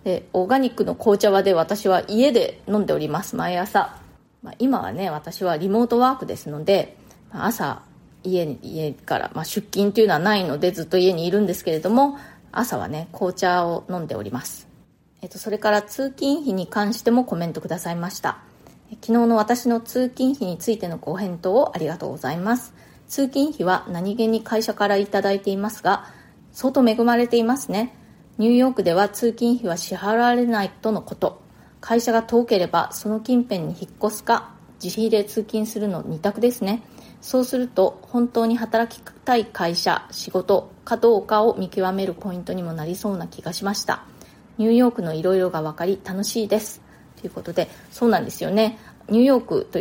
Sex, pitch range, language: female, 185-235 Hz, Japanese